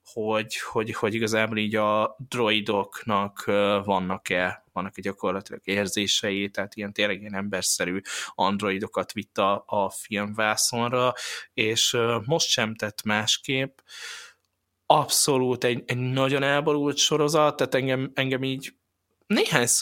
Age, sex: 20-39, male